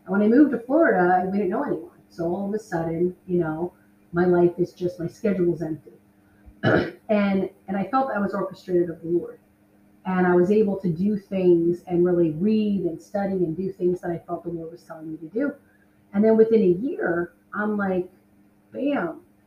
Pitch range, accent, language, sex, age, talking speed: 165-205 Hz, American, English, female, 30-49, 205 wpm